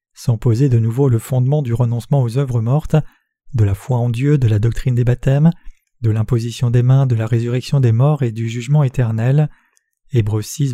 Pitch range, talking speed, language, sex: 115-140 Hz, 200 wpm, French, male